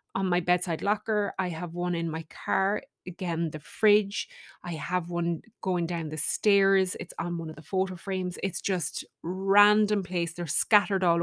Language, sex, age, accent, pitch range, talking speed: English, female, 20-39, Irish, 170-205 Hz, 180 wpm